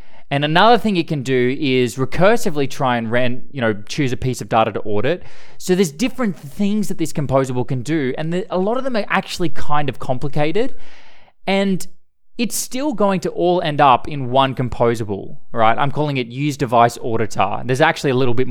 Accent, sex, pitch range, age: Australian, male, 130-190 Hz, 20-39